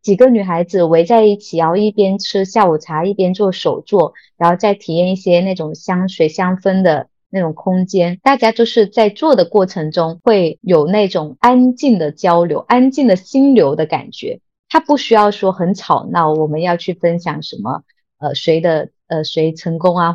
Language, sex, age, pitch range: Chinese, female, 20-39, 165-225 Hz